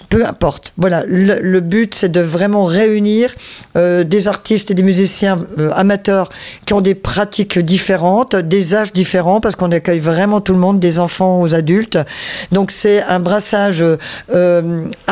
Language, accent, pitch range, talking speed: French, French, 155-190 Hz, 170 wpm